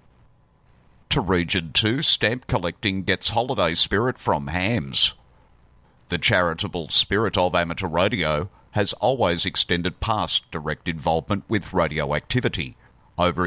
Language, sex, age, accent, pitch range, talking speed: English, male, 50-69, Australian, 80-100 Hz, 115 wpm